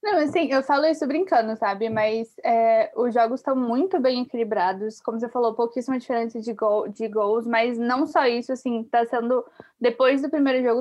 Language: Portuguese